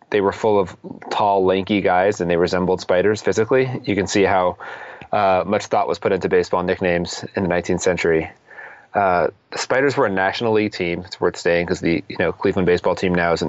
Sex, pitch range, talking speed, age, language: male, 95-115 Hz, 220 wpm, 30-49, English